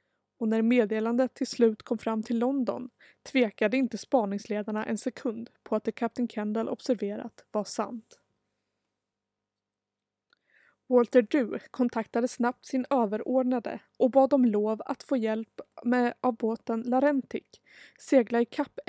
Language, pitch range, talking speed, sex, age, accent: Swedish, 220-255 Hz, 135 wpm, female, 20-39, native